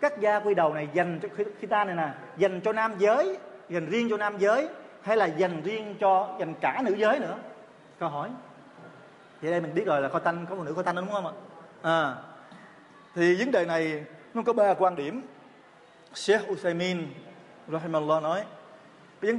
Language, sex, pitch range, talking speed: Vietnamese, male, 160-205 Hz, 205 wpm